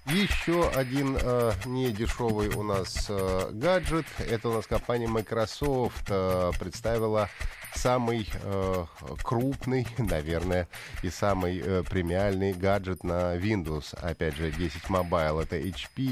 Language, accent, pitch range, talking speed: Russian, native, 90-125 Hz, 120 wpm